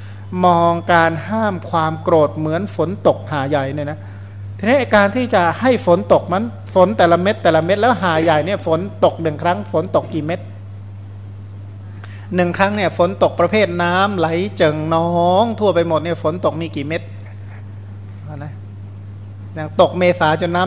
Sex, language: male, Thai